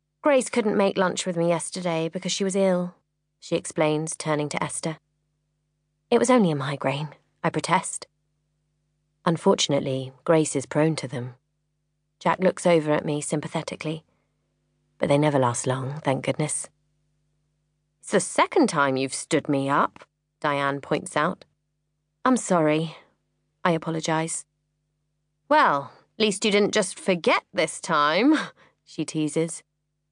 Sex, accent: female, British